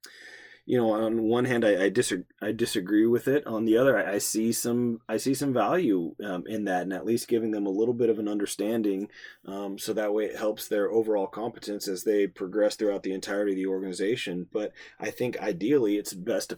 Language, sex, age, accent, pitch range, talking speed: English, male, 30-49, American, 110-130 Hz, 225 wpm